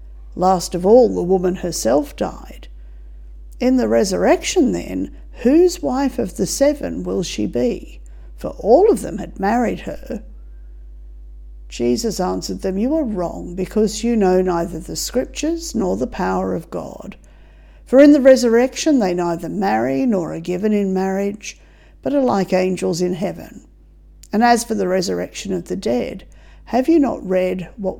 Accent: Australian